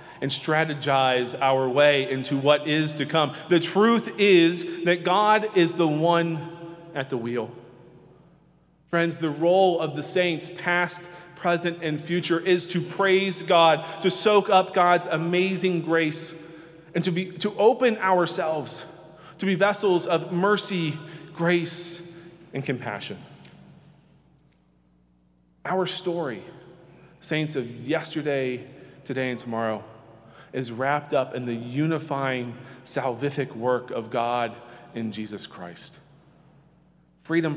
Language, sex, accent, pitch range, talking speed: English, male, American, 125-170 Hz, 120 wpm